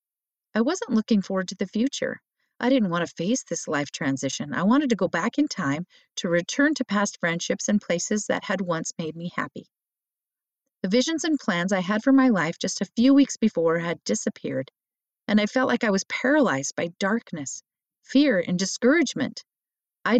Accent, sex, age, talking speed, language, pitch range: American, female, 40-59, 190 wpm, English, 175-250 Hz